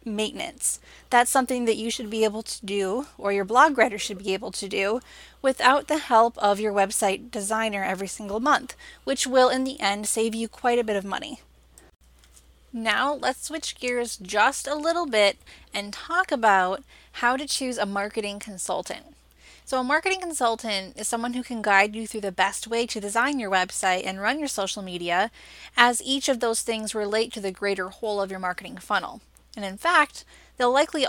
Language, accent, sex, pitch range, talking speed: English, American, female, 200-255 Hz, 195 wpm